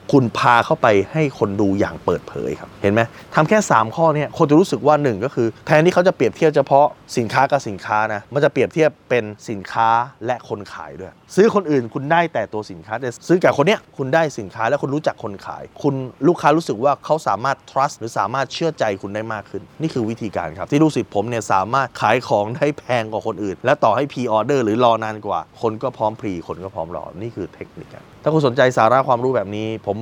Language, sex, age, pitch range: Thai, male, 20-39, 105-140 Hz